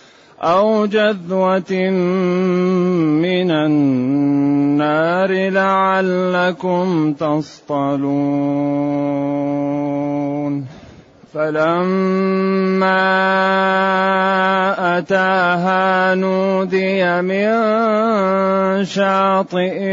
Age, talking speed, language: 30-49, 35 wpm, Arabic